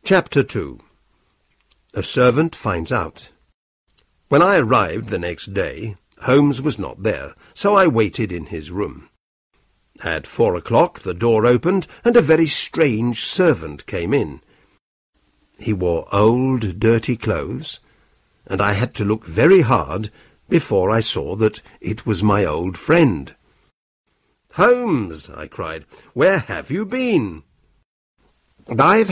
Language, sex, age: Chinese, male, 60-79